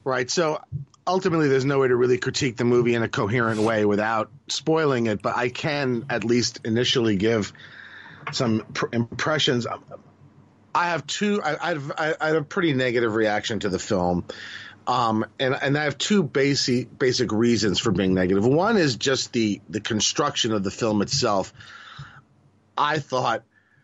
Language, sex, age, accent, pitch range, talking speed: English, male, 40-59, American, 110-140 Hz, 170 wpm